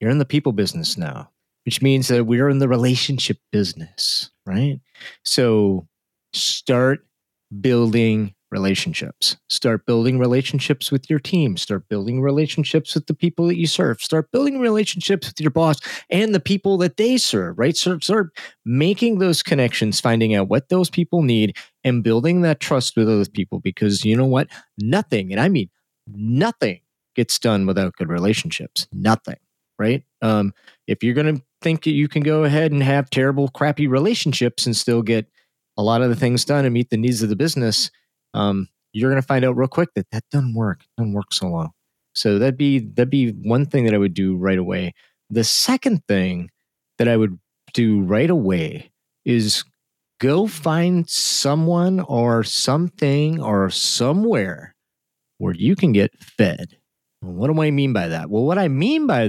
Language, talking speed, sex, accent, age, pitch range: English, 180 wpm, male, American, 30-49, 110-155 Hz